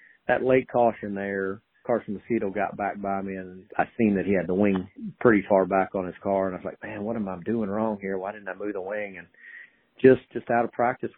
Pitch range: 95-115 Hz